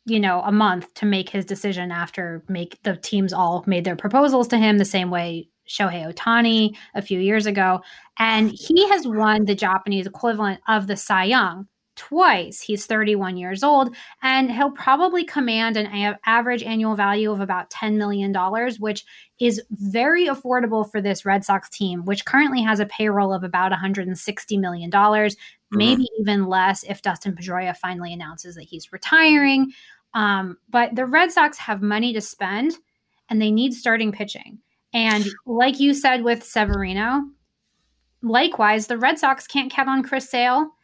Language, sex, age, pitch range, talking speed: English, female, 20-39, 195-250 Hz, 165 wpm